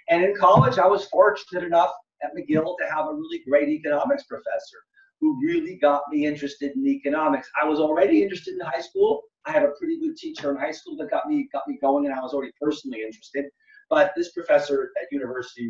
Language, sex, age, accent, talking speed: English, male, 40-59, American, 215 wpm